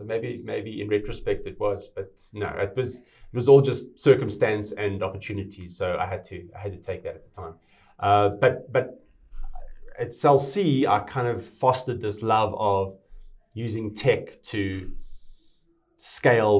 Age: 30-49